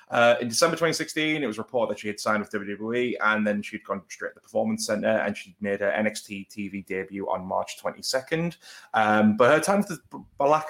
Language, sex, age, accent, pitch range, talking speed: English, male, 20-39, British, 100-120 Hz, 220 wpm